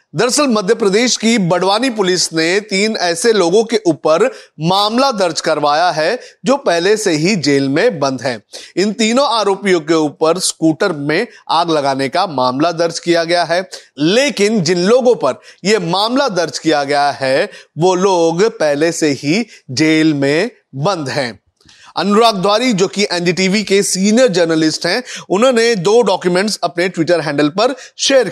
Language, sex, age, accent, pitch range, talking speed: Hindi, male, 30-49, native, 165-220 Hz, 160 wpm